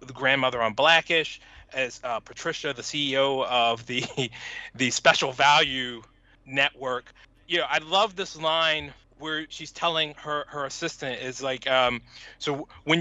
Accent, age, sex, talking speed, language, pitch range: American, 30-49, male, 150 wpm, English, 140-165 Hz